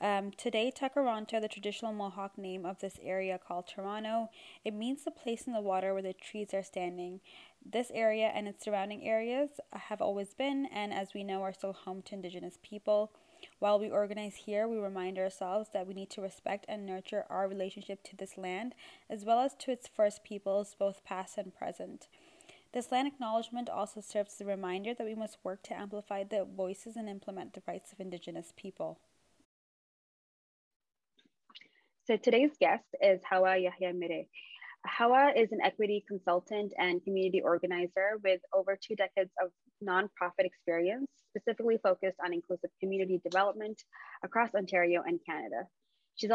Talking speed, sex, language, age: 165 wpm, female, English, 20-39